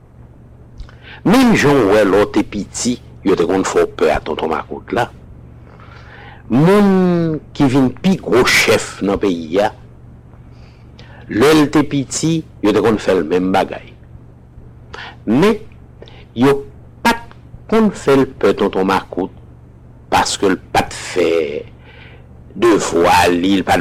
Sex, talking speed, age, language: male, 120 wpm, 60-79, English